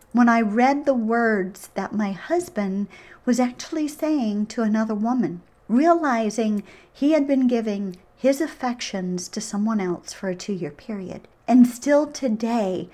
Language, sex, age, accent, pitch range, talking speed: English, female, 40-59, American, 200-260 Hz, 150 wpm